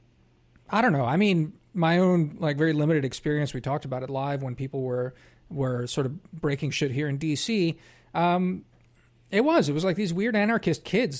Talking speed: 200 wpm